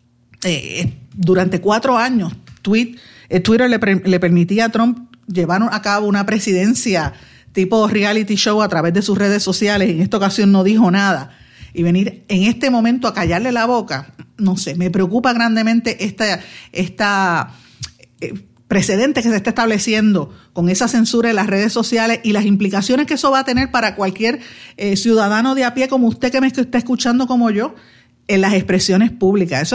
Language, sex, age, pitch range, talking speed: Spanish, female, 50-69, 185-235 Hz, 180 wpm